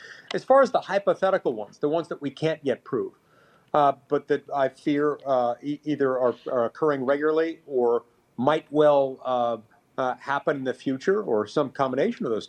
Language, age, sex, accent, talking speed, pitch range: English, 50-69, male, American, 185 wpm, 135-175 Hz